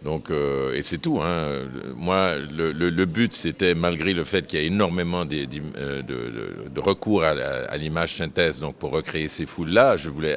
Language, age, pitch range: French, 50-69, 70-90 Hz